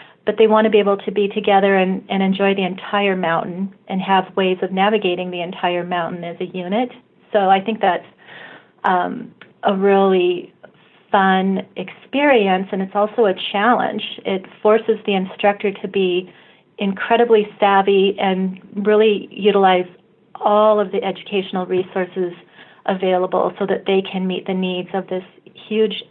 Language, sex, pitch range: English, female, 185-210 Hz